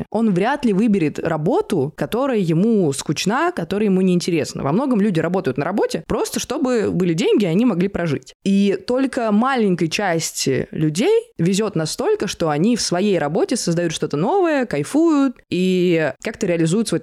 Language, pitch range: Russian, 165-210 Hz